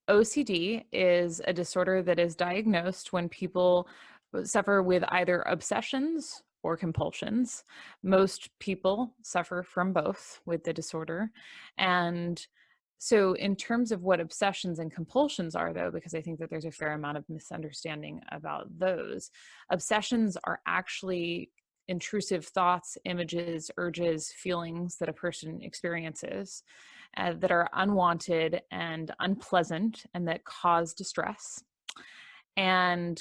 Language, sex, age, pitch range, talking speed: English, female, 20-39, 165-195 Hz, 125 wpm